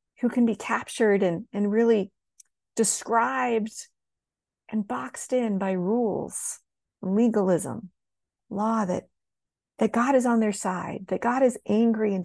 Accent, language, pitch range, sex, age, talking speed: American, English, 195-255 Hz, female, 40-59, 130 wpm